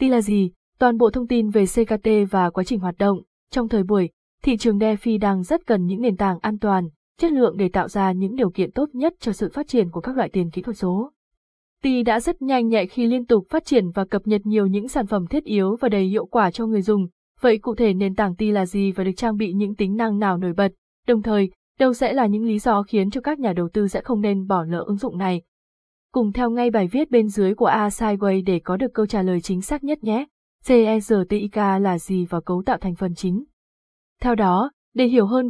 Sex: female